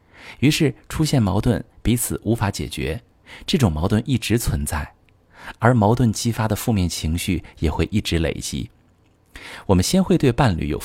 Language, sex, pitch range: Chinese, male, 85-115 Hz